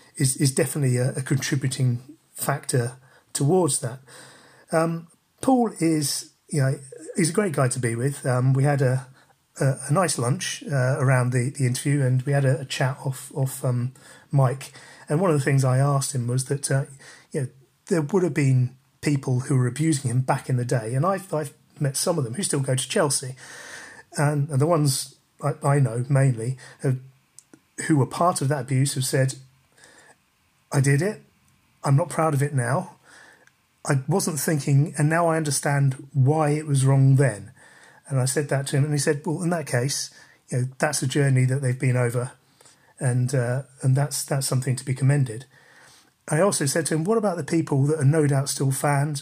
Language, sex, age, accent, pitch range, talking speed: English, male, 40-59, British, 130-155 Hz, 200 wpm